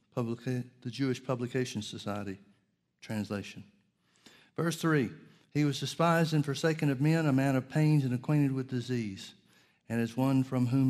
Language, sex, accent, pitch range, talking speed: English, male, American, 110-135 Hz, 150 wpm